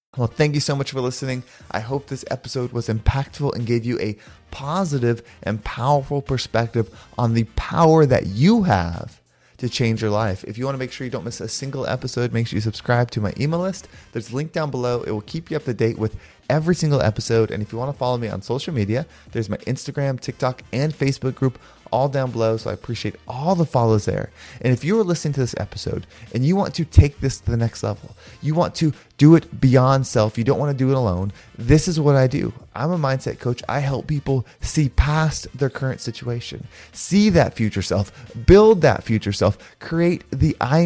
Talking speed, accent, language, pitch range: 225 wpm, American, English, 110-145 Hz